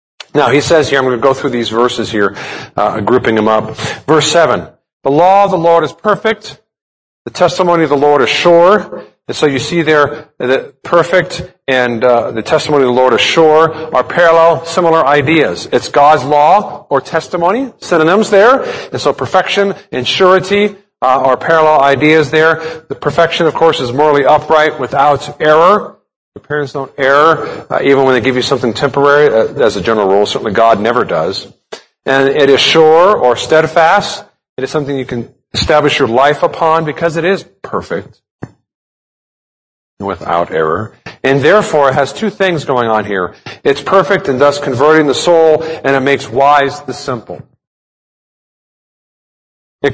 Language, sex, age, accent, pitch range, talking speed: English, male, 40-59, American, 130-170 Hz, 170 wpm